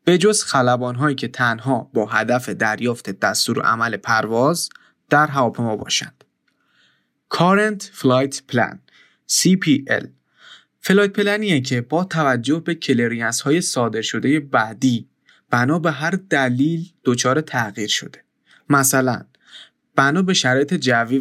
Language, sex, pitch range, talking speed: Persian, male, 125-160 Hz, 125 wpm